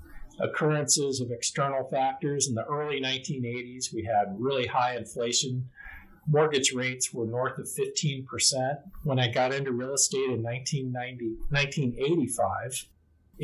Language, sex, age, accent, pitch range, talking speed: English, male, 50-69, American, 115-145 Hz, 125 wpm